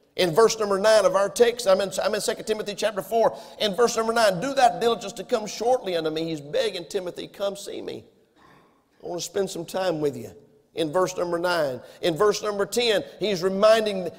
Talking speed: 205 wpm